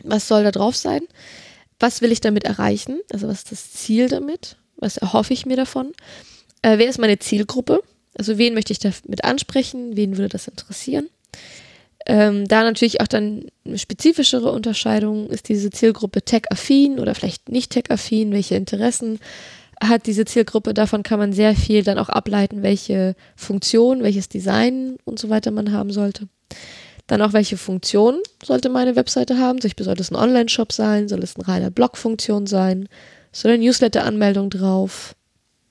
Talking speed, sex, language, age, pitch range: 165 wpm, female, German, 20-39, 205-240 Hz